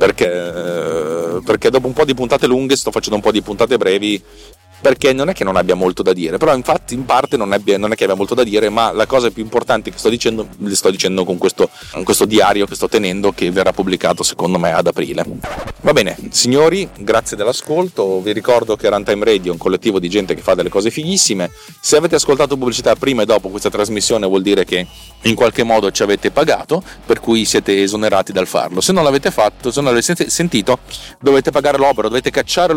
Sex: male